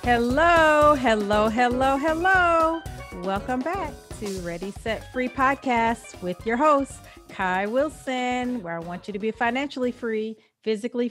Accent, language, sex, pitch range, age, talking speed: American, English, female, 190-240 Hz, 40-59, 135 wpm